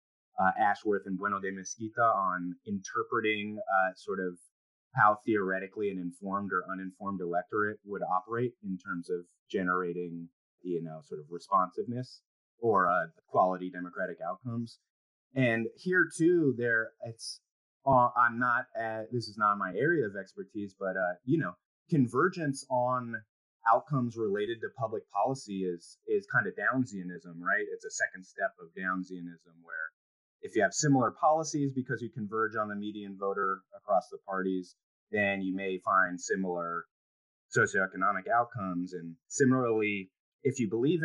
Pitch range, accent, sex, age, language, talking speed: 90-120 Hz, American, male, 30-49, English, 145 wpm